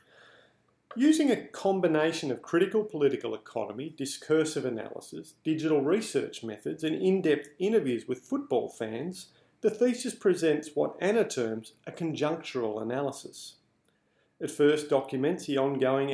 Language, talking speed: English, 120 wpm